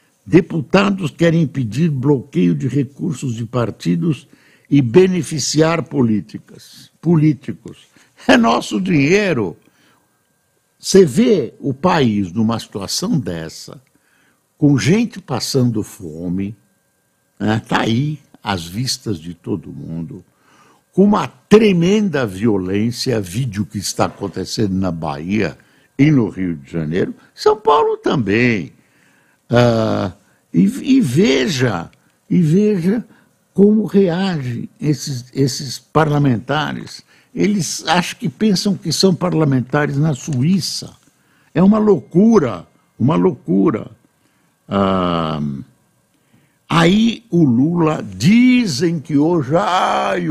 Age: 60-79